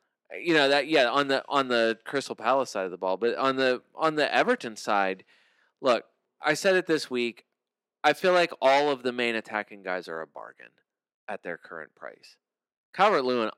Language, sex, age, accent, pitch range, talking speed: English, male, 20-39, American, 115-145 Hz, 200 wpm